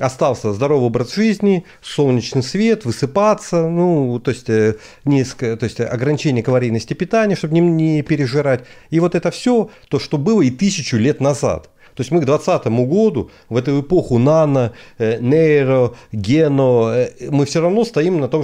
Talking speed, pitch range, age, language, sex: 160 wpm, 125-165 Hz, 40-59, Russian, male